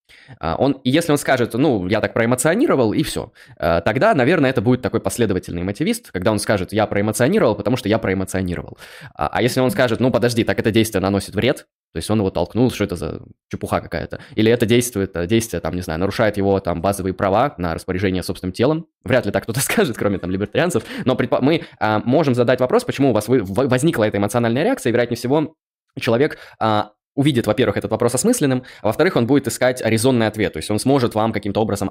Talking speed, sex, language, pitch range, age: 200 wpm, male, Russian, 100-120 Hz, 20-39